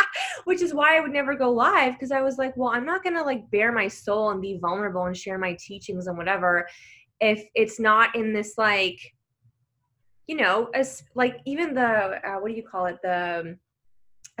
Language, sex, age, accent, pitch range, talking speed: English, female, 20-39, American, 180-235 Hz, 210 wpm